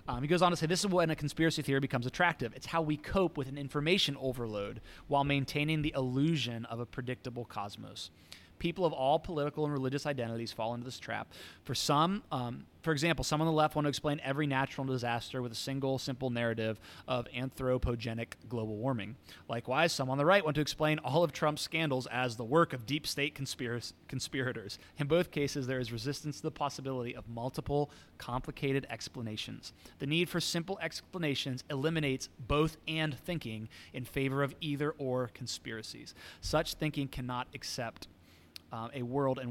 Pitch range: 120-155 Hz